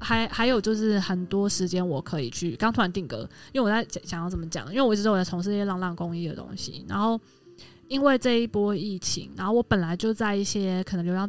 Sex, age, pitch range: female, 20-39, 175-220 Hz